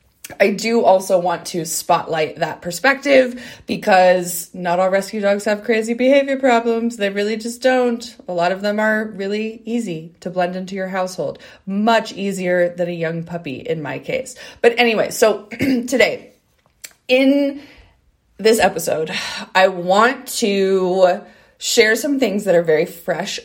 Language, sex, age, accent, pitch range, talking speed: English, female, 20-39, American, 175-230 Hz, 150 wpm